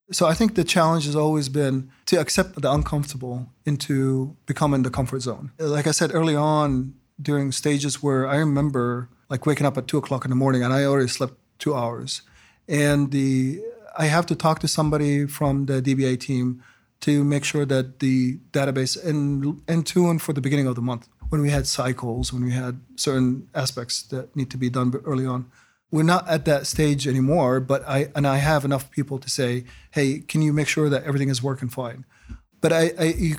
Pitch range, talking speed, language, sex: 130-155 Hz, 205 wpm, English, male